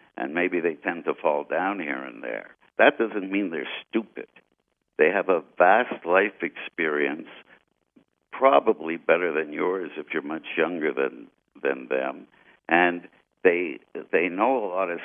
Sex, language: male, English